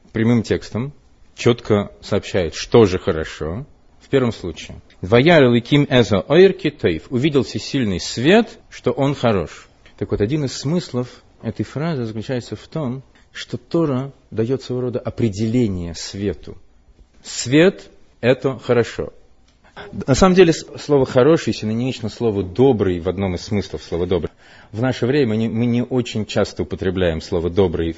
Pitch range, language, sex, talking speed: 95-130 Hz, Russian, male, 130 wpm